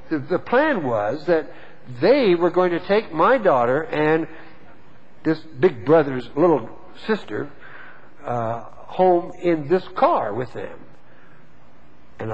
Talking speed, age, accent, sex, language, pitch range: 120 wpm, 60-79, American, male, English, 130-180 Hz